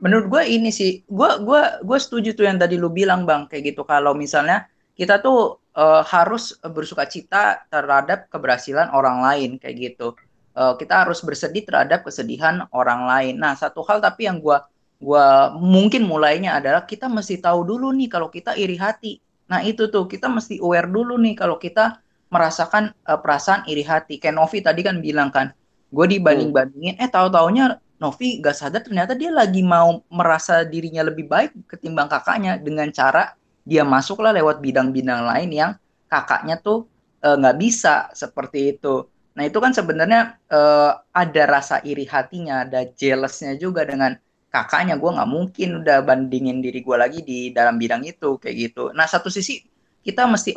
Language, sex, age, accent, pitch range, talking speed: Indonesian, female, 20-39, native, 140-200 Hz, 170 wpm